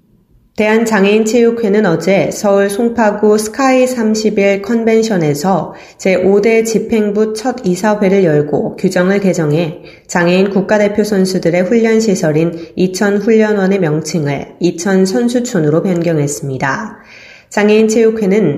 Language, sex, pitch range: Korean, female, 170-215 Hz